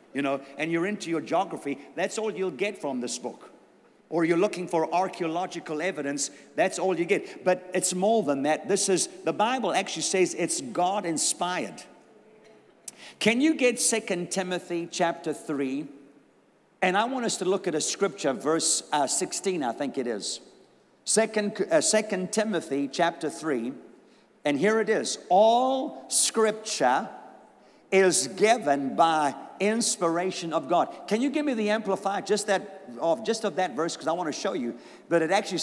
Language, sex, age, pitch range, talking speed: English, male, 50-69, 165-210 Hz, 165 wpm